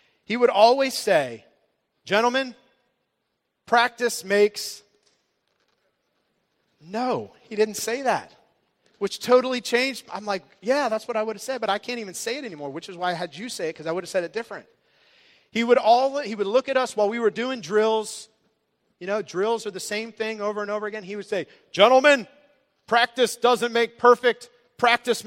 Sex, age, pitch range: male, 40-59, 190-240 Hz